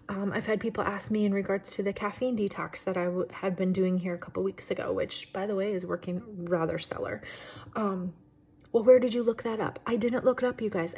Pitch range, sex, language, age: 180-215 Hz, female, English, 30-49